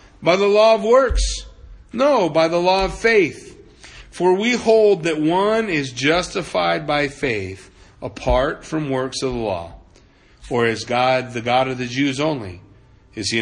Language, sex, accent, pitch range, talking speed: English, male, American, 125-170 Hz, 165 wpm